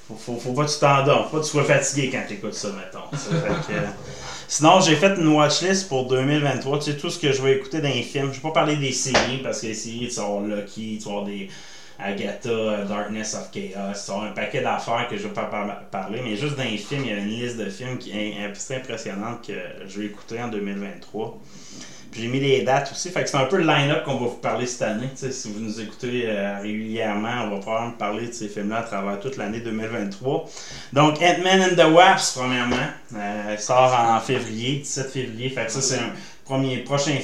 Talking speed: 235 wpm